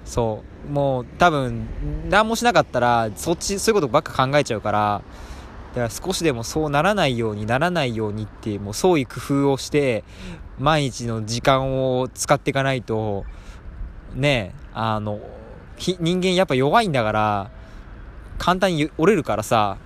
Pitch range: 100-140 Hz